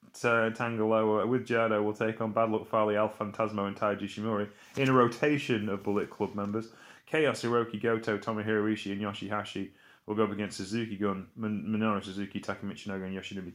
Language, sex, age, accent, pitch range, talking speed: English, male, 30-49, British, 100-125 Hz, 175 wpm